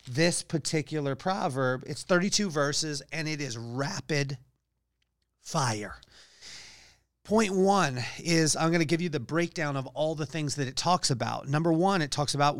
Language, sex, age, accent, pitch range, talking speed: English, male, 40-59, American, 130-155 Hz, 160 wpm